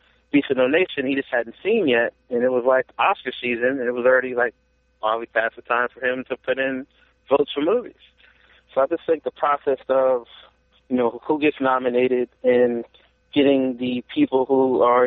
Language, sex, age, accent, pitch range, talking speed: English, male, 30-49, American, 115-130 Hz, 200 wpm